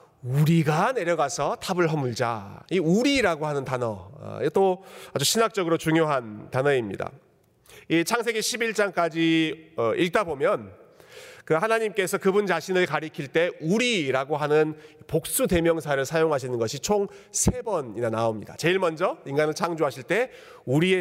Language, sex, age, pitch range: Korean, male, 40-59, 140-205 Hz